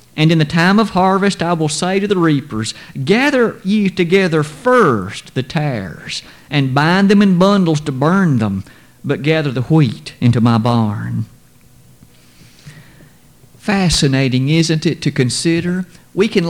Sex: male